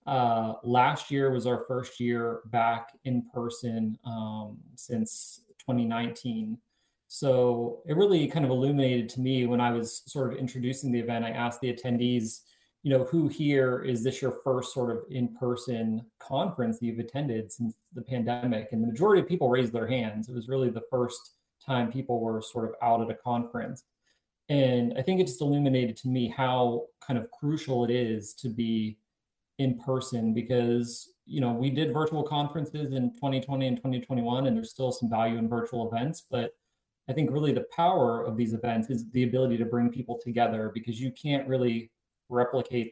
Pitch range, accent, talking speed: 115-130 Hz, American, 180 wpm